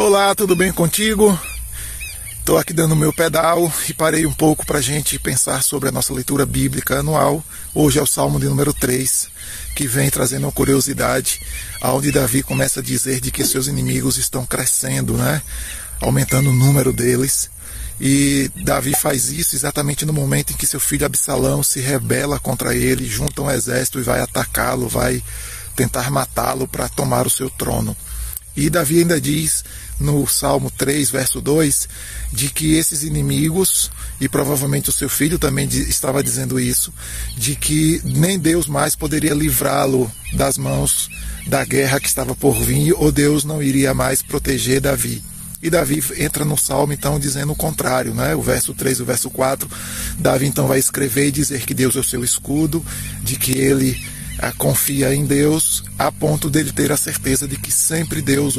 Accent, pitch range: Brazilian, 125-145 Hz